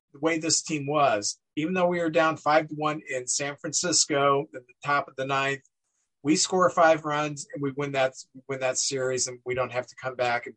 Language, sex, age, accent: English, male, 50-69, American